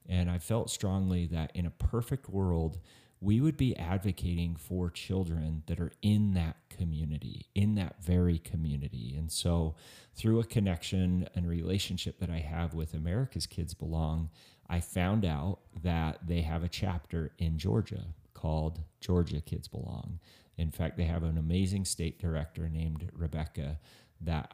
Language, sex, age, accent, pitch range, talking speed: English, male, 30-49, American, 80-95 Hz, 155 wpm